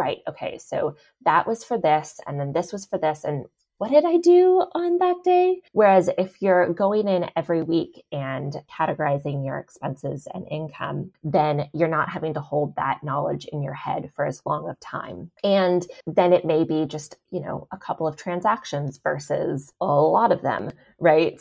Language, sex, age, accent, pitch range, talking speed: English, female, 20-39, American, 150-185 Hz, 190 wpm